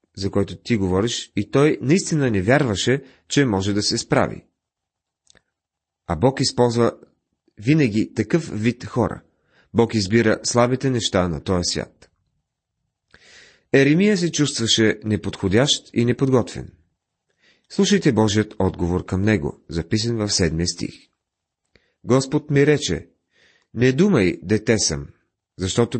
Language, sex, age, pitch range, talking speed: Bulgarian, male, 40-59, 95-135 Hz, 120 wpm